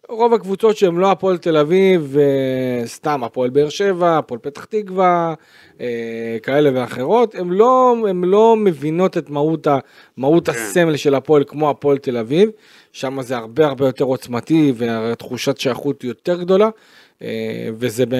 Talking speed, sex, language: 140 wpm, male, Hebrew